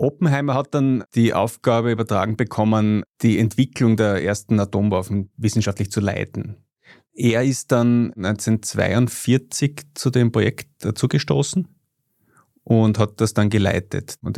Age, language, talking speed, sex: 30-49, German, 120 wpm, male